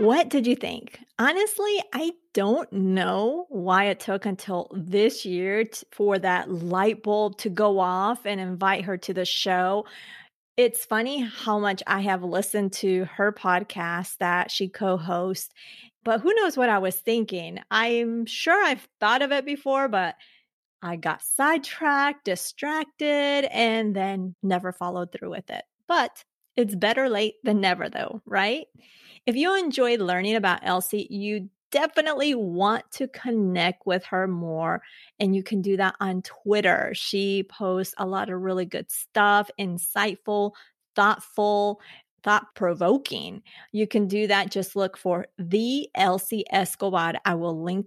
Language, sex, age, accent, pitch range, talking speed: English, female, 30-49, American, 185-230 Hz, 150 wpm